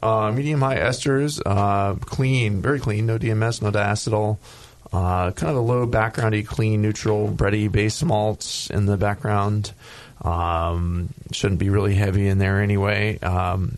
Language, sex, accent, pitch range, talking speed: English, male, American, 100-120 Hz, 150 wpm